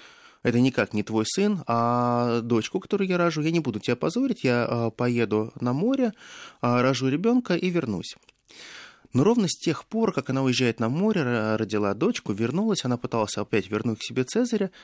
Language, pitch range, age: Russian, 105-155 Hz, 20-39